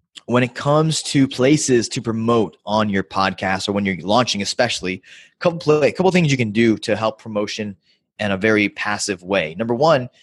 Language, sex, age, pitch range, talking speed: English, male, 20-39, 95-120 Hz, 180 wpm